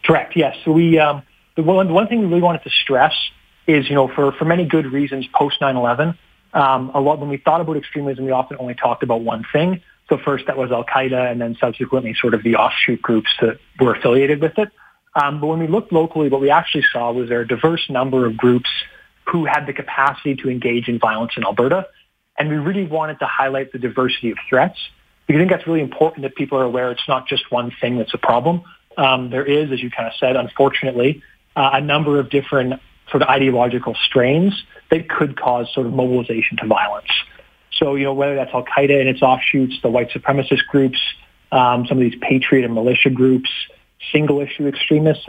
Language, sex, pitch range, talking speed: English, male, 125-150 Hz, 220 wpm